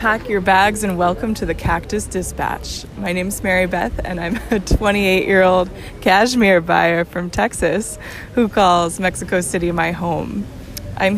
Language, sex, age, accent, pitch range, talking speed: English, female, 20-39, American, 175-205 Hz, 155 wpm